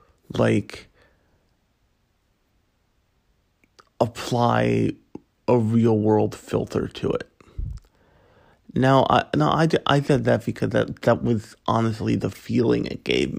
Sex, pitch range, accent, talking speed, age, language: male, 105-130 Hz, American, 110 wpm, 30-49, English